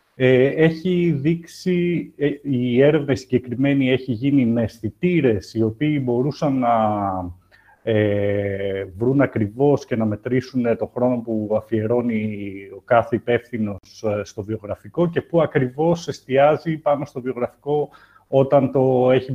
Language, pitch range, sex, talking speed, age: Greek, 110-140 Hz, male, 120 wpm, 30-49